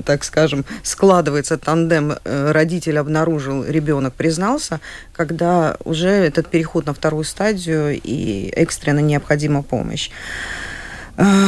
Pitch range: 150-175 Hz